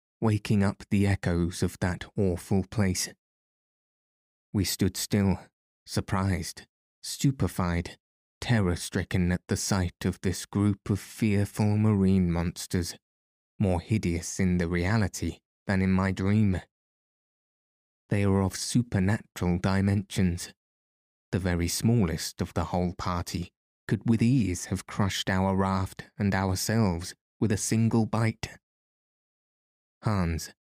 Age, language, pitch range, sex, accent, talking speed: 20-39, English, 90-110 Hz, male, British, 115 wpm